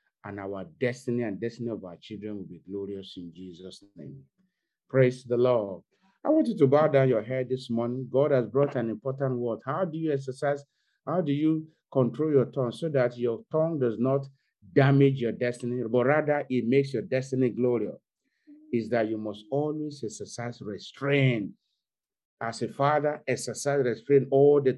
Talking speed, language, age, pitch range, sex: 175 wpm, English, 50-69, 120-145 Hz, male